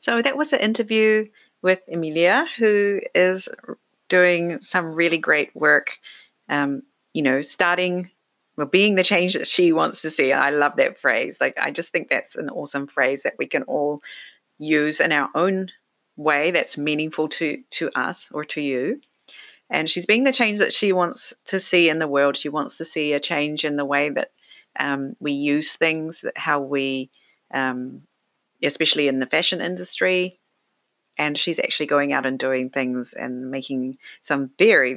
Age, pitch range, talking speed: 40-59, 135-180 Hz, 180 wpm